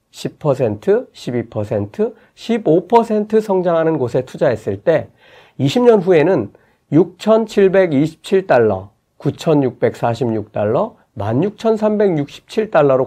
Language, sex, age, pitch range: Korean, male, 40-59, 130-210 Hz